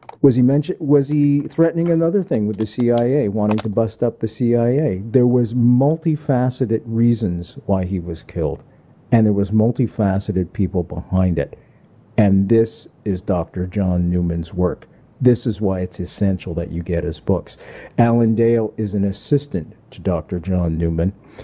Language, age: English, 50-69